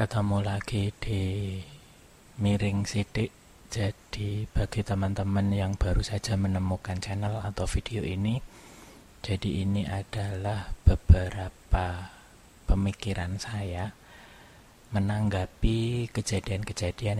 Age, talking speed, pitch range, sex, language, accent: 30-49, 85 wpm, 90-105 Hz, male, Indonesian, native